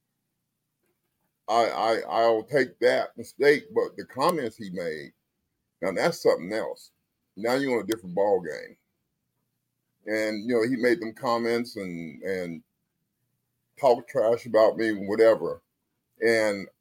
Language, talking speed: English, 130 wpm